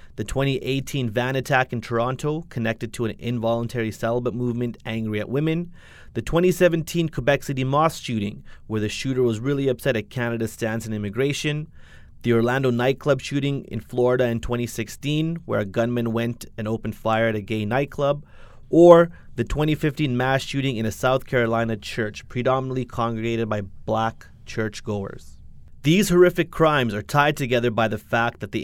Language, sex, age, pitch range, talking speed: English, male, 30-49, 110-140 Hz, 160 wpm